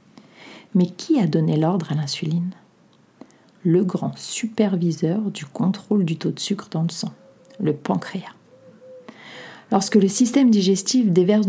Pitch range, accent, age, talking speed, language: 155-210 Hz, French, 40-59, 135 wpm, French